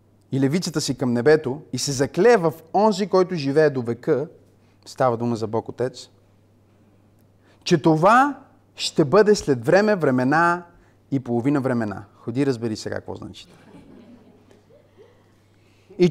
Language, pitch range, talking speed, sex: Bulgarian, 105-165 Hz, 130 wpm, male